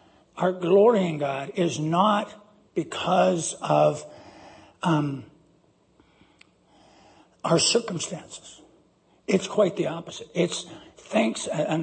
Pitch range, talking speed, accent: 150-185 Hz, 90 wpm, American